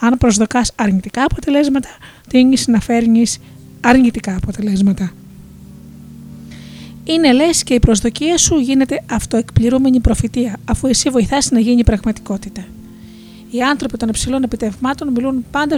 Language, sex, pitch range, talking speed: Greek, female, 220-265 Hz, 120 wpm